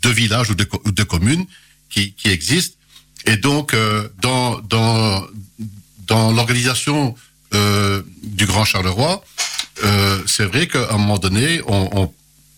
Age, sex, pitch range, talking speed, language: 60-79, male, 95-115 Hz, 145 wpm, French